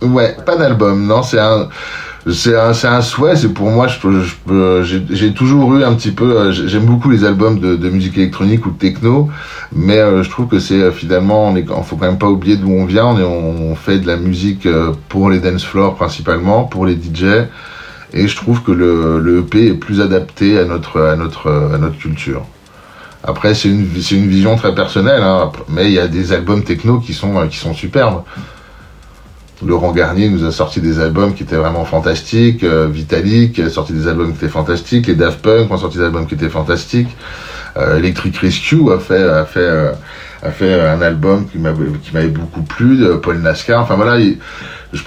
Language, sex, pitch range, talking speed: French, male, 85-110 Hz, 210 wpm